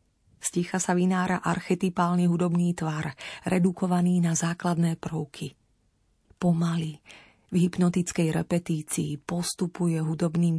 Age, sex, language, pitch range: 30-49, female, Slovak, 165-190 Hz